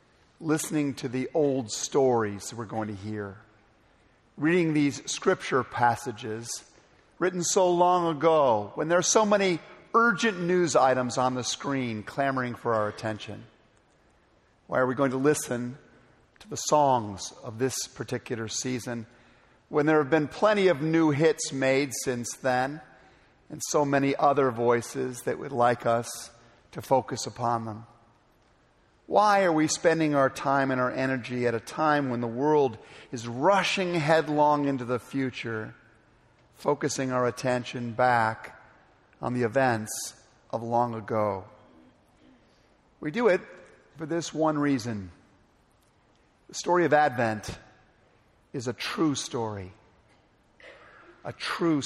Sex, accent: male, American